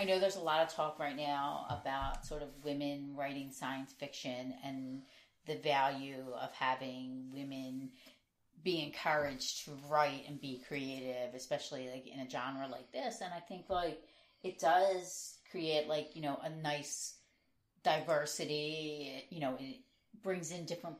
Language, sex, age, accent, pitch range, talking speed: English, female, 30-49, American, 135-165 Hz, 155 wpm